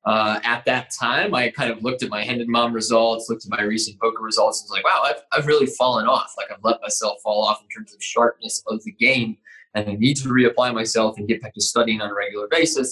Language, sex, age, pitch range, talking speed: English, male, 20-39, 105-120 Hz, 265 wpm